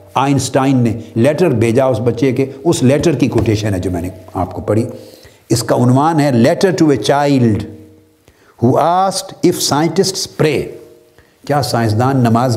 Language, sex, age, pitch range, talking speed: Urdu, male, 60-79, 115-150 Hz, 160 wpm